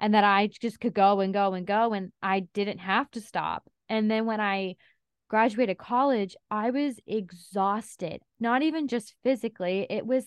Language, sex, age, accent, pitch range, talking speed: English, female, 20-39, American, 190-235 Hz, 180 wpm